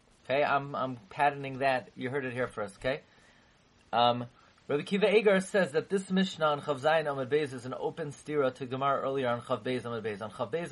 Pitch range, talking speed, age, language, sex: 125-160 Hz, 190 wpm, 30-49, English, male